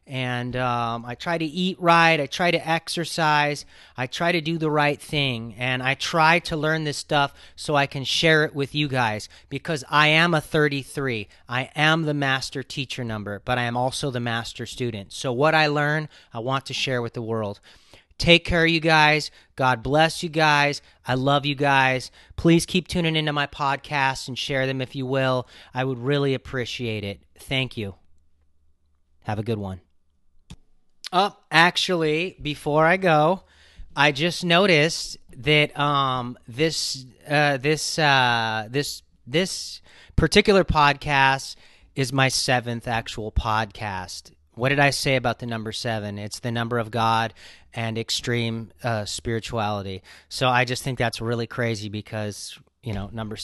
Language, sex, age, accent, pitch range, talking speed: English, male, 30-49, American, 115-150 Hz, 165 wpm